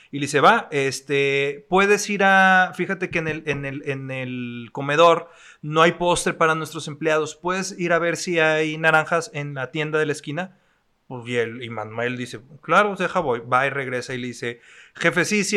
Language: French